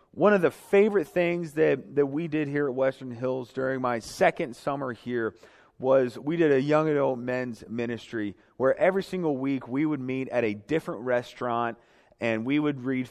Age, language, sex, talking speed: 30-49, English, male, 190 wpm